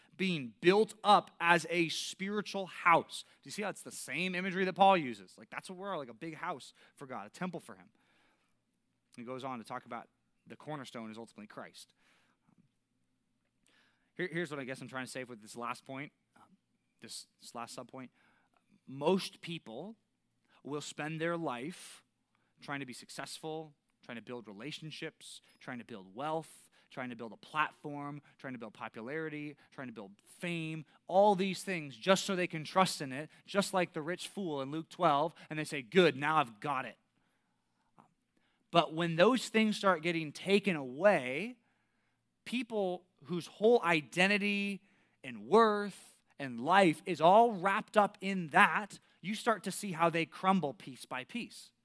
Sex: male